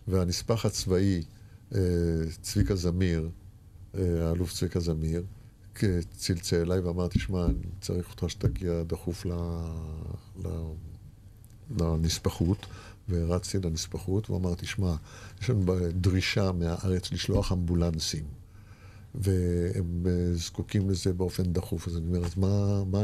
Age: 50-69